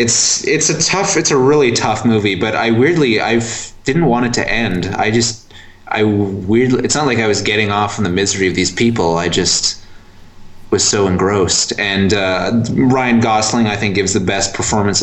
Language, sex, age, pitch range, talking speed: English, male, 20-39, 100-120 Hz, 200 wpm